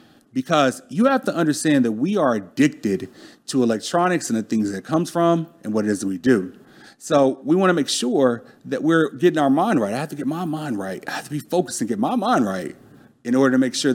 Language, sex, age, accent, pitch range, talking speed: English, male, 40-59, American, 120-180 Hz, 255 wpm